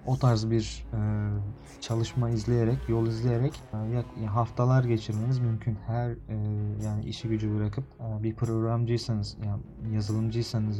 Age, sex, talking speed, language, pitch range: 30-49, male, 130 wpm, Turkish, 110-125 Hz